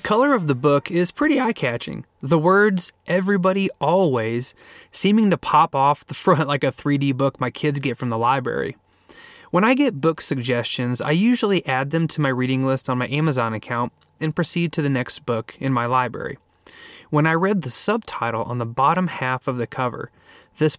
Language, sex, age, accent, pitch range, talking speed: English, male, 20-39, American, 125-165 Hz, 195 wpm